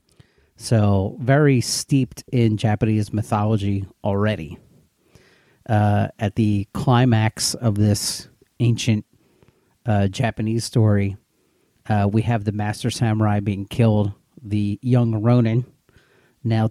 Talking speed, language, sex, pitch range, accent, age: 105 wpm, English, male, 105-125 Hz, American, 40-59